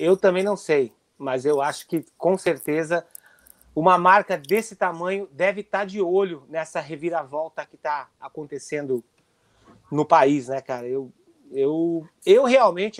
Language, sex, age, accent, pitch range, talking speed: Portuguese, male, 30-49, Brazilian, 170-225 Hz, 145 wpm